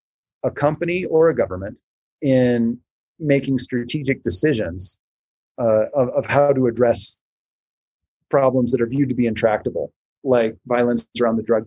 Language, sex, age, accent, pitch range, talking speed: English, male, 30-49, American, 110-135 Hz, 140 wpm